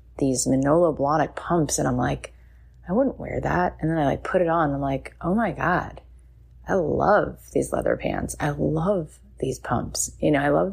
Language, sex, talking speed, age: English, female, 200 wpm, 30-49